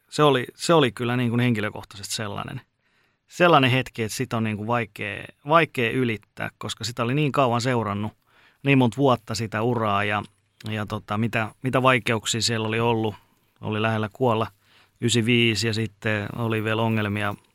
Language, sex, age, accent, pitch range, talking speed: Finnish, male, 30-49, native, 110-130 Hz, 165 wpm